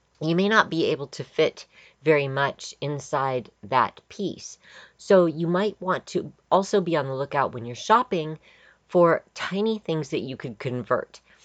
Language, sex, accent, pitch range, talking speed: English, female, American, 130-170 Hz, 170 wpm